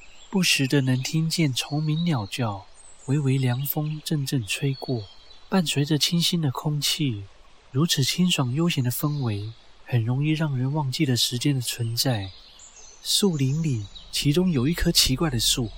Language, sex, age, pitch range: Chinese, male, 30-49, 115-160 Hz